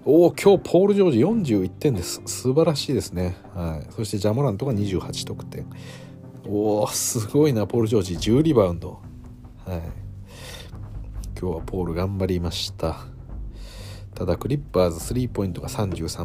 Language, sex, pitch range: Japanese, male, 90-115 Hz